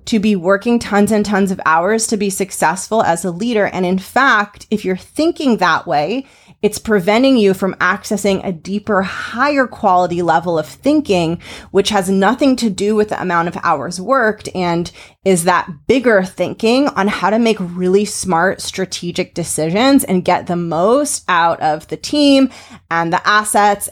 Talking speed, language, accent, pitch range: 175 wpm, English, American, 175-225 Hz